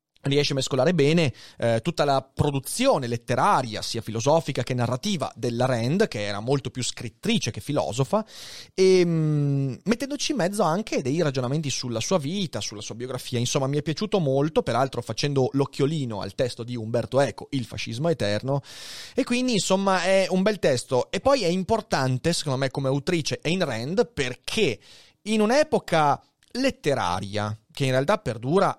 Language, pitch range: Italian, 125-205 Hz